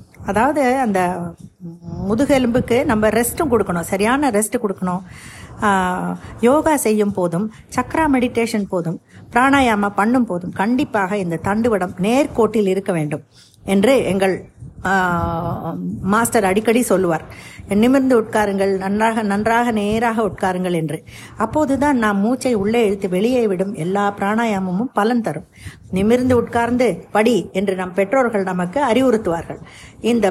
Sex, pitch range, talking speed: female, 195-240 Hz, 110 wpm